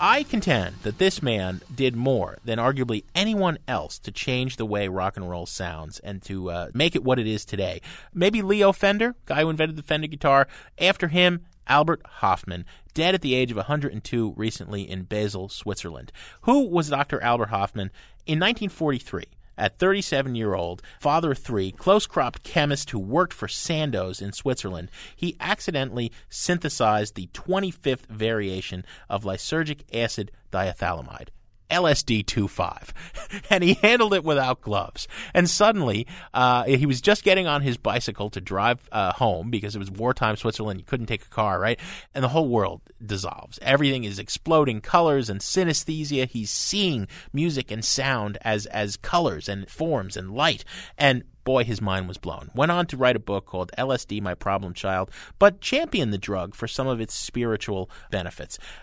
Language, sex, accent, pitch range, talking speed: English, male, American, 100-155 Hz, 165 wpm